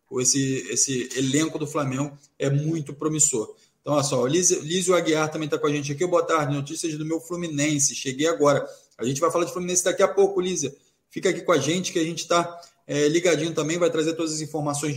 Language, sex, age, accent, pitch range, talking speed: Portuguese, male, 20-39, Brazilian, 140-165 Hz, 225 wpm